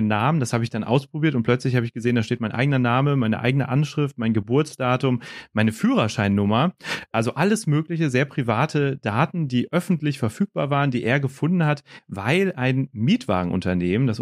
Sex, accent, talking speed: male, German, 175 wpm